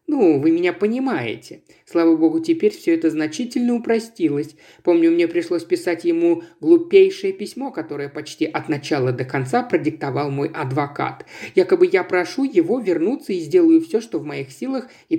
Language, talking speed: Russian, 160 wpm